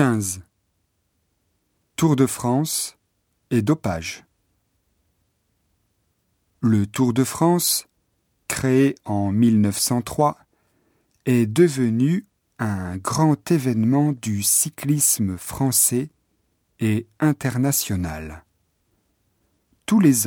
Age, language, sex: 50-69, Japanese, male